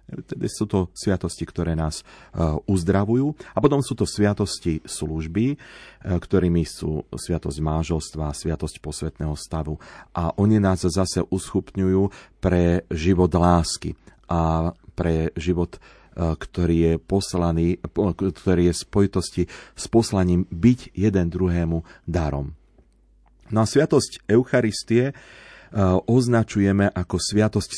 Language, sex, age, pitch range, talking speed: Slovak, male, 40-59, 85-105 Hz, 110 wpm